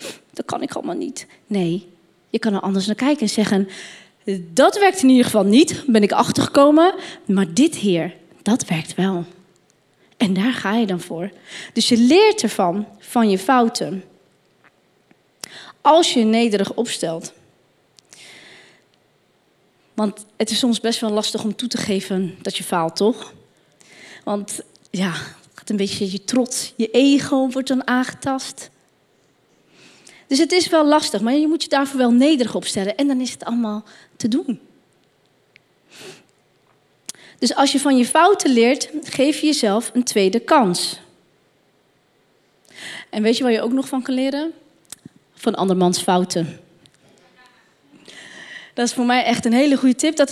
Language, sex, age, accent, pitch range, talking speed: Dutch, female, 20-39, Dutch, 200-280 Hz, 155 wpm